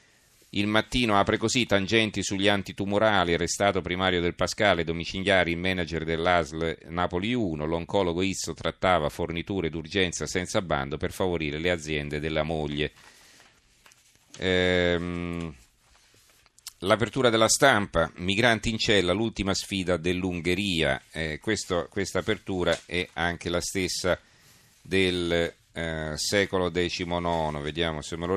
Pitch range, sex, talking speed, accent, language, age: 80-95 Hz, male, 115 wpm, native, Italian, 40-59